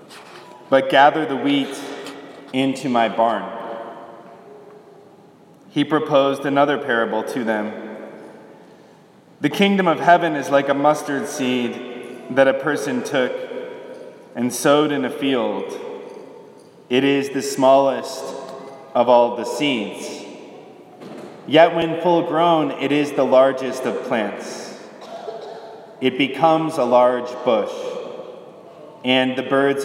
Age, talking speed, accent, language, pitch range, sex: 30-49, 115 wpm, American, English, 125-160 Hz, male